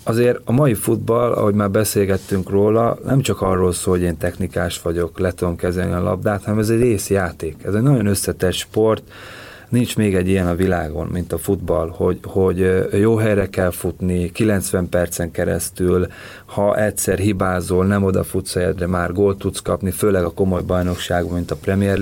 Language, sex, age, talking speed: Hungarian, male, 30-49, 175 wpm